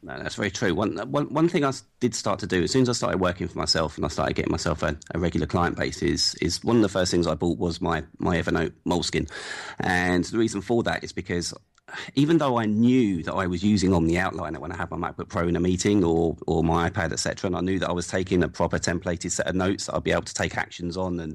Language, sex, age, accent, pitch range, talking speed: English, male, 30-49, British, 85-95 Hz, 280 wpm